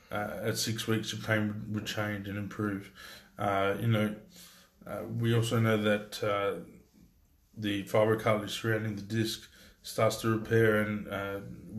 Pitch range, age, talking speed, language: 105-110 Hz, 20-39, 150 wpm, English